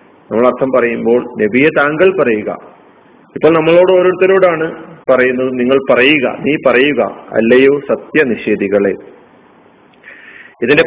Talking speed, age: 90 wpm, 40-59